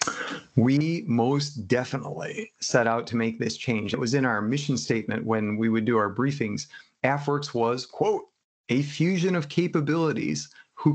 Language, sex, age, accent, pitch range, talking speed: English, male, 30-49, American, 115-145 Hz, 160 wpm